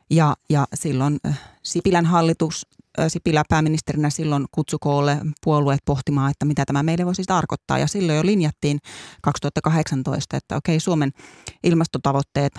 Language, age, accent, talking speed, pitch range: Finnish, 30-49, native, 125 wpm, 140-165 Hz